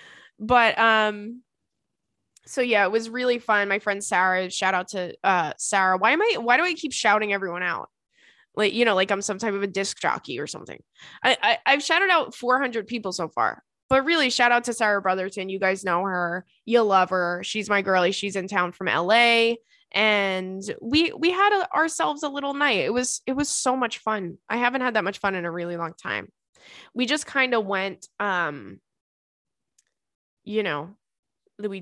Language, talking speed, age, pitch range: English, 200 wpm, 20-39, 195-250 Hz